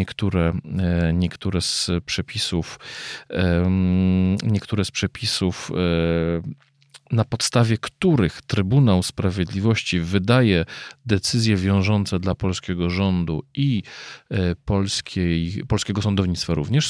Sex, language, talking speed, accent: male, Polish, 65 wpm, native